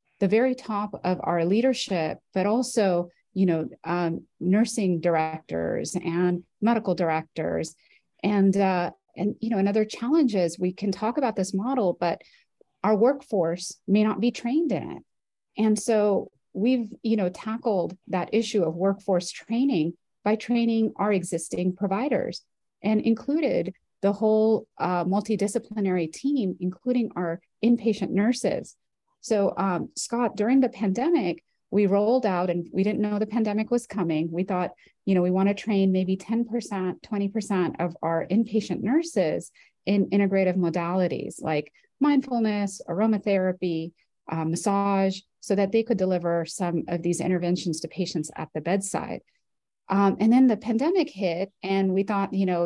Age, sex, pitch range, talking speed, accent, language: 30-49, female, 180-220 Hz, 150 wpm, American, English